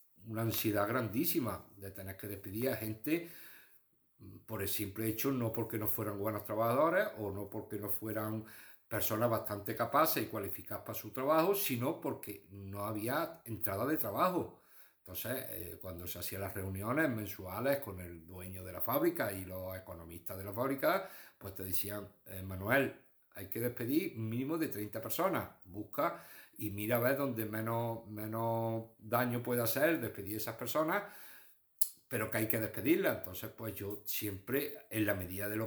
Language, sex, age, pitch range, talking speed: Spanish, male, 60-79, 100-120 Hz, 170 wpm